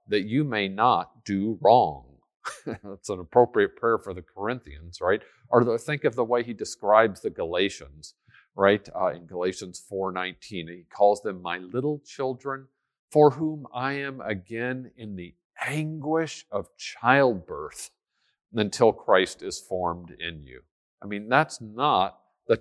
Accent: American